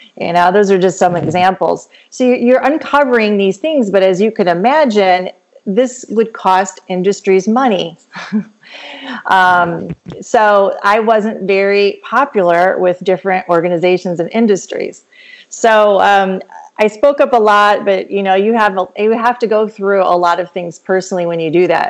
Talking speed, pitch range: 160 wpm, 175-215 Hz